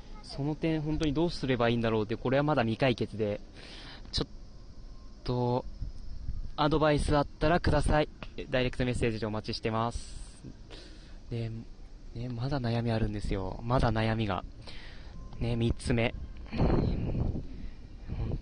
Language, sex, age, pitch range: Japanese, male, 20-39, 110-150 Hz